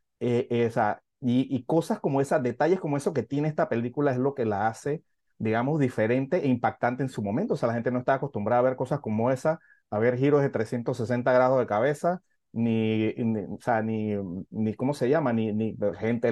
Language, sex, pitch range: Spanish, male, 120-165 Hz